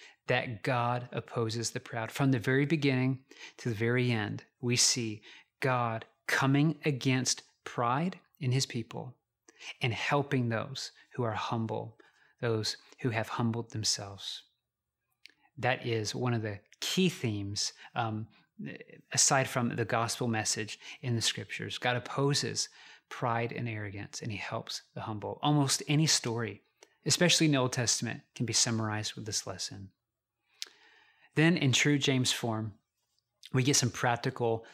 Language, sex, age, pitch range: English, male, 30-49, 115-150 Hz